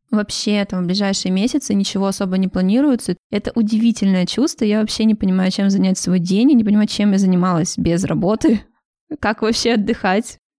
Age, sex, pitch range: 20-39, female, 190-220 Hz